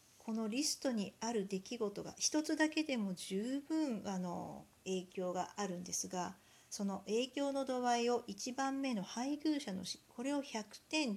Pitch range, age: 195-280 Hz, 50-69